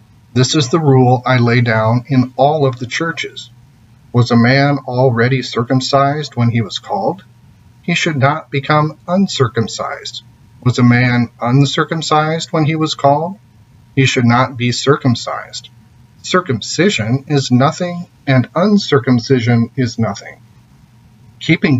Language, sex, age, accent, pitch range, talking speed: English, male, 40-59, American, 120-140 Hz, 130 wpm